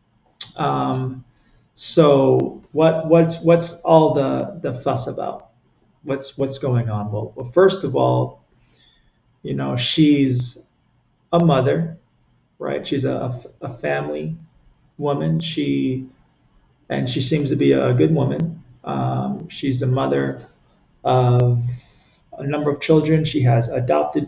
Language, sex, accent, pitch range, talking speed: English, male, American, 120-150 Hz, 125 wpm